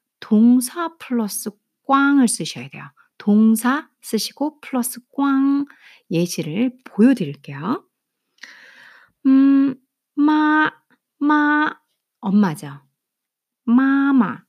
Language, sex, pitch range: Korean, female, 185-265 Hz